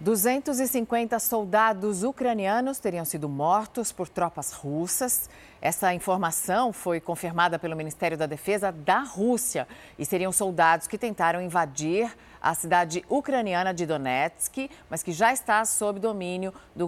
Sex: female